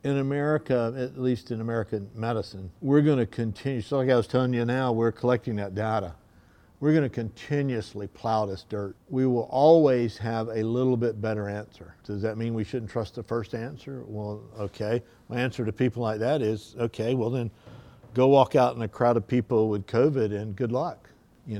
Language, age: English, 50-69